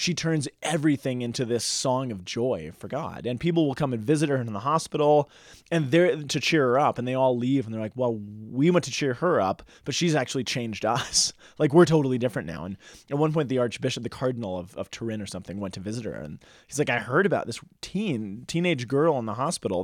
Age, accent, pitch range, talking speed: 20-39, American, 110-150 Hz, 240 wpm